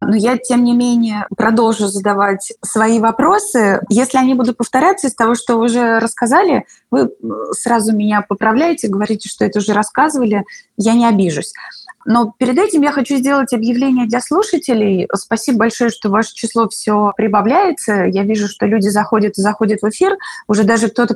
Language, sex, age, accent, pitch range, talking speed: Russian, female, 20-39, native, 210-250 Hz, 165 wpm